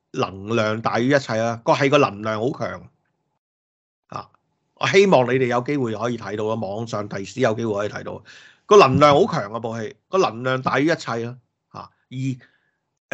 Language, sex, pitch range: Chinese, male, 110-145 Hz